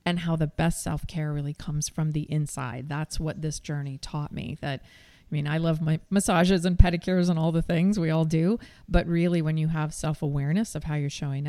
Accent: American